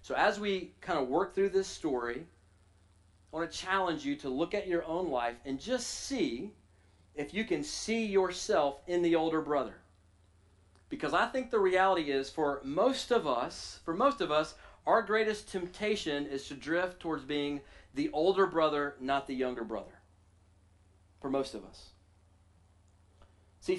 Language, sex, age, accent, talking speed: English, male, 40-59, American, 165 wpm